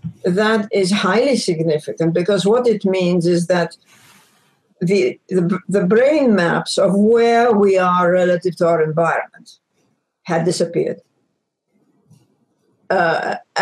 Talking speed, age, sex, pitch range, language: 115 wpm, 60-79, female, 175-215 Hz, English